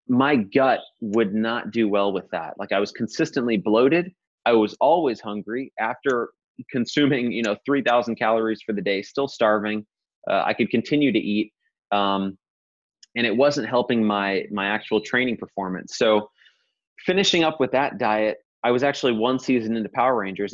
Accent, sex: American, male